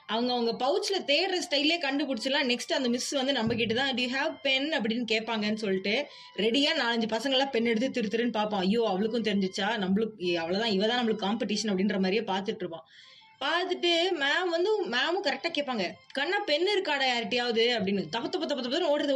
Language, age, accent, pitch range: Tamil, 20-39, native, 215-290 Hz